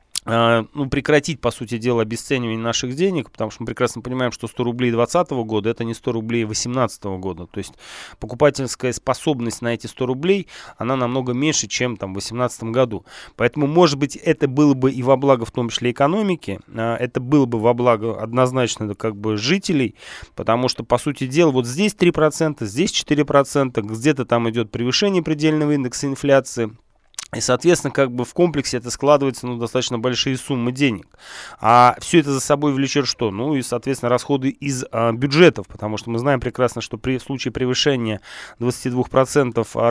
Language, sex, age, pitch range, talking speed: Russian, male, 20-39, 115-145 Hz, 175 wpm